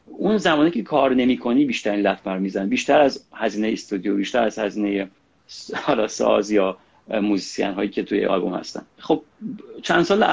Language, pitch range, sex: Persian, 100-125 Hz, male